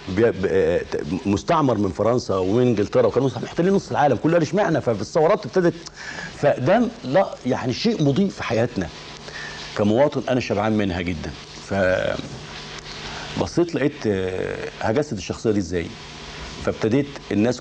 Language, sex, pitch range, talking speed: Arabic, male, 105-145 Hz, 120 wpm